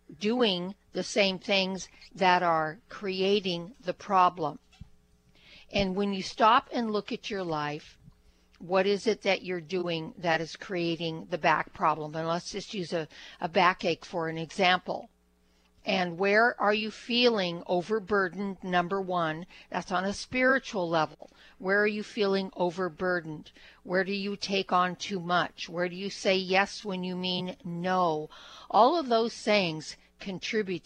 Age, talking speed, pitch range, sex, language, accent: 60-79, 155 wpm, 165-200 Hz, female, English, American